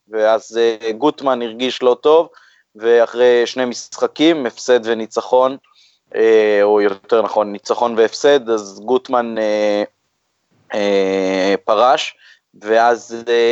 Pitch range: 110-130 Hz